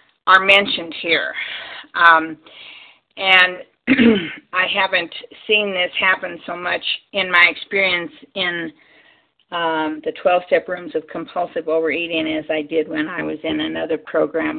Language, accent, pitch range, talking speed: English, American, 160-200 Hz, 130 wpm